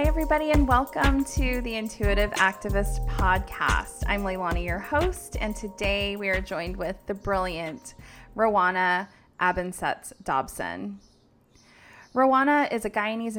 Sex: female